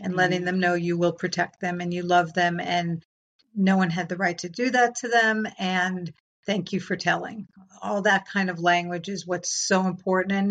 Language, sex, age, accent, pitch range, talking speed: English, female, 50-69, American, 175-200 Hz, 210 wpm